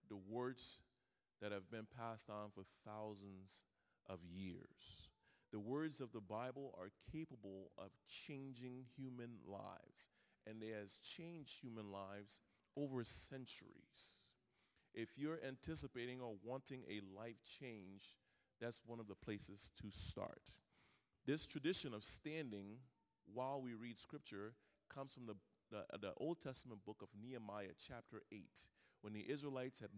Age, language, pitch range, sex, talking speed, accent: 30-49, English, 100-125 Hz, male, 135 wpm, American